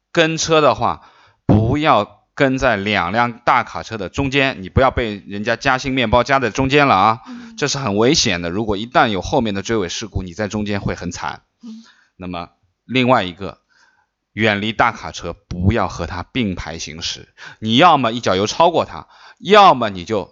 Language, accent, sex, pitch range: Chinese, native, male, 90-120 Hz